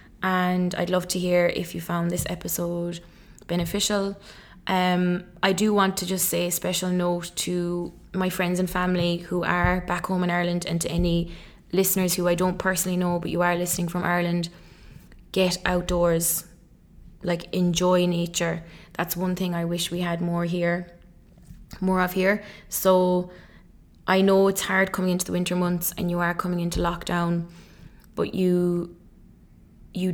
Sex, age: female, 20-39